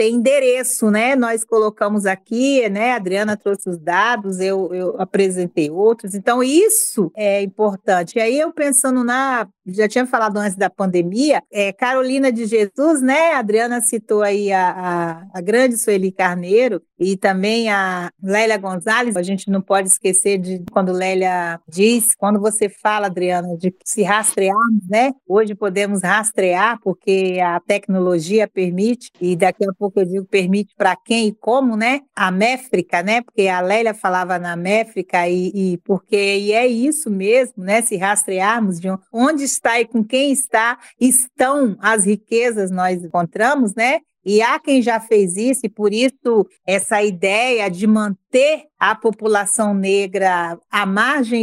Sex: female